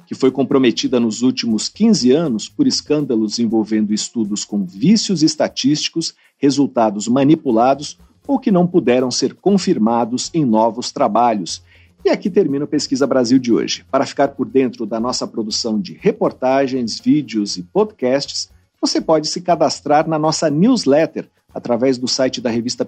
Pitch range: 125-205 Hz